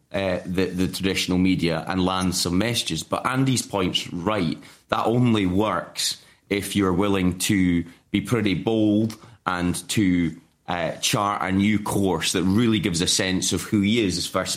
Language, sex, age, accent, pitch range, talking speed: English, male, 30-49, British, 90-110 Hz, 170 wpm